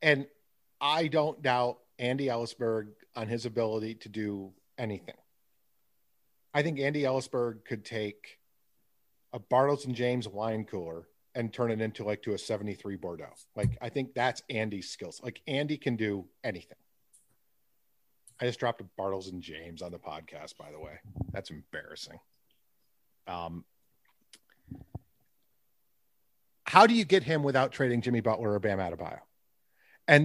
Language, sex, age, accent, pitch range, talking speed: English, male, 40-59, American, 110-145 Hz, 145 wpm